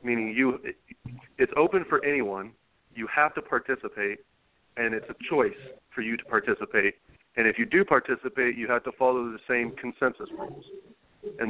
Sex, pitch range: male, 110-130 Hz